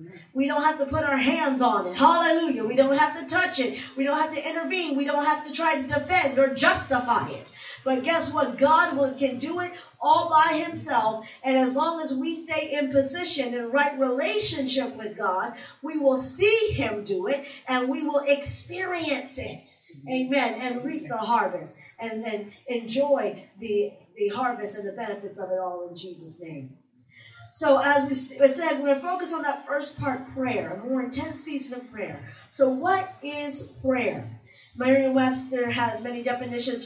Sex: female